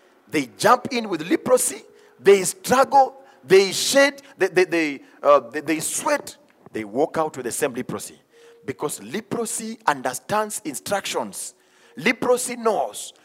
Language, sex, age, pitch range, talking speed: English, male, 40-59, 165-280 Hz, 130 wpm